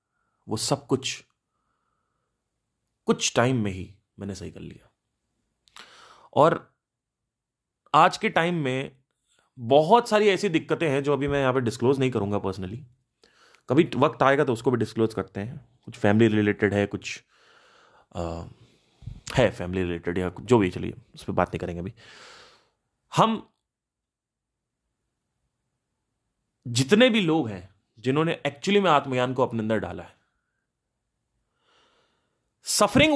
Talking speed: 130 wpm